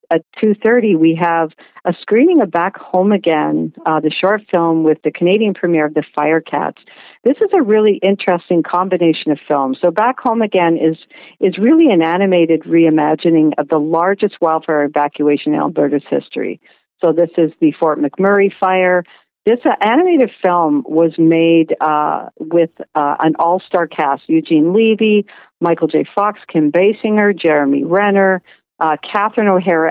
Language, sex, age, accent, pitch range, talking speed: English, female, 50-69, American, 155-195 Hz, 155 wpm